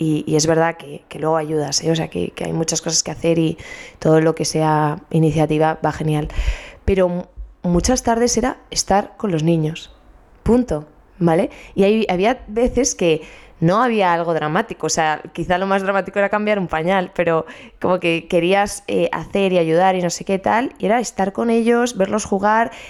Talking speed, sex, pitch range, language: 200 wpm, female, 165-200 Hz, Spanish